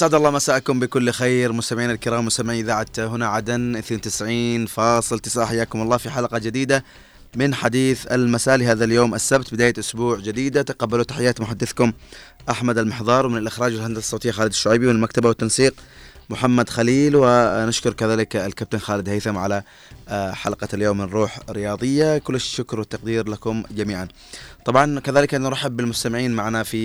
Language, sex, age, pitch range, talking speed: Arabic, male, 20-39, 110-130 Hz, 145 wpm